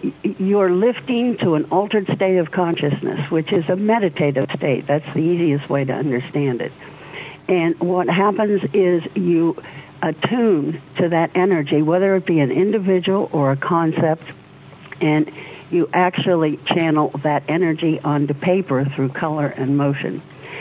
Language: English